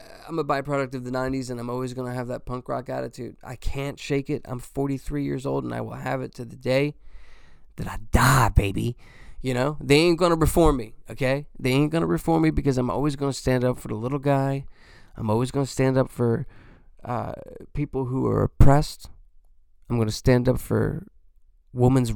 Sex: male